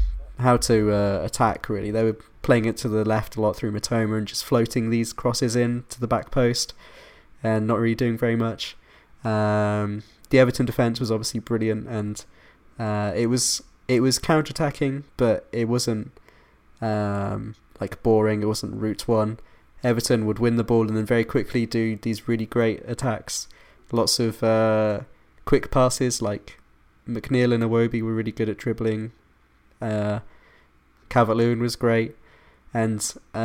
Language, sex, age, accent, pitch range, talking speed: English, male, 20-39, British, 105-120 Hz, 160 wpm